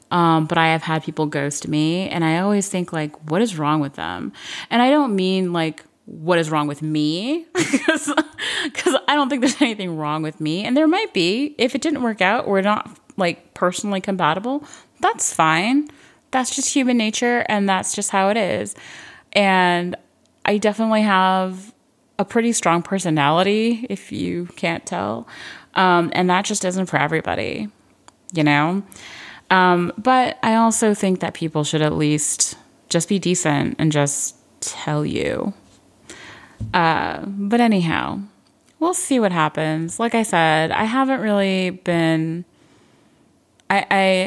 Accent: American